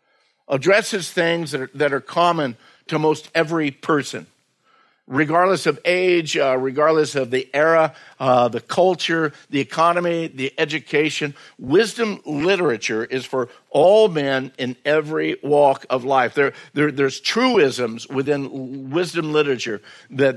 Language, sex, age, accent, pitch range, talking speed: English, male, 50-69, American, 130-165 Hz, 135 wpm